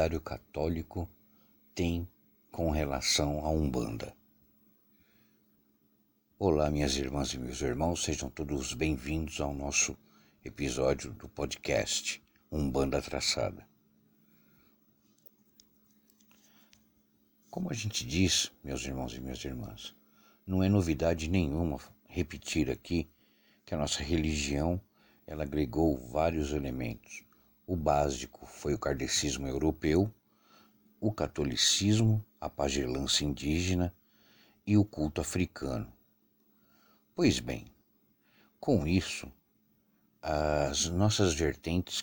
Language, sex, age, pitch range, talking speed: Portuguese, male, 60-79, 70-85 Hz, 95 wpm